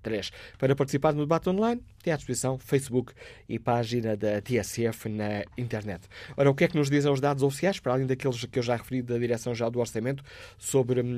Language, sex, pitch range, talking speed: Portuguese, male, 115-140 Hz, 205 wpm